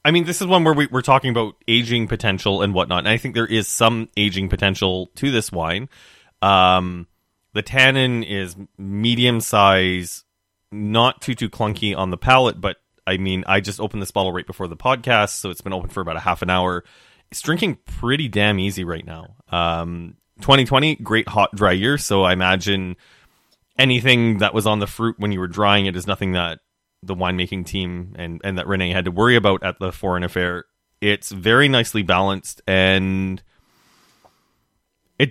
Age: 20-39